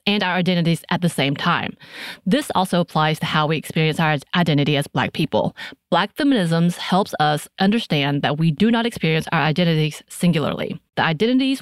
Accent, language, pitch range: American, English, 155-200 Hz